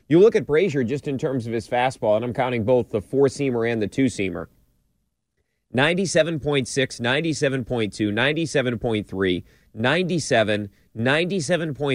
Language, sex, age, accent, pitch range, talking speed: English, male, 30-49, American, 110-145 Hz, 110 wpm